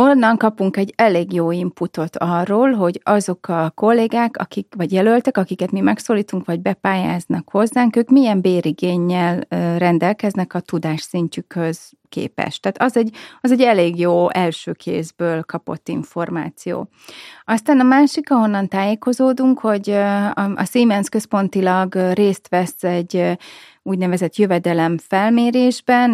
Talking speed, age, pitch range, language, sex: 115 wpm, 30-49, 175-215 Hz, Hungarian, female